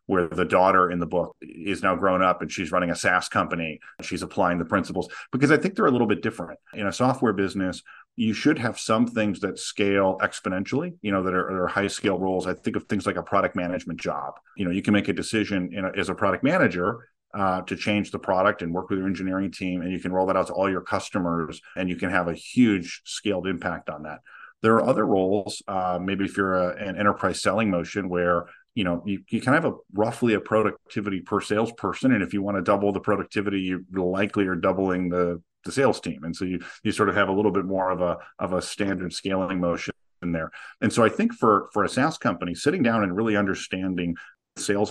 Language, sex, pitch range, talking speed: English, male, 90-100 Hz, 235 wpm